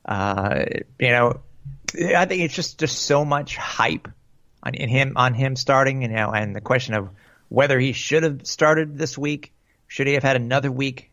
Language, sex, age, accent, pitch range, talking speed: English, male, 30-49, American, 110-135 Hz, 195 wpm